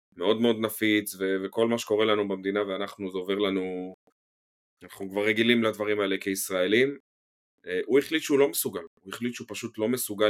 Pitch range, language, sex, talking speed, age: 95-110 Hz, Hebrew, male, 180 wpm, 30-49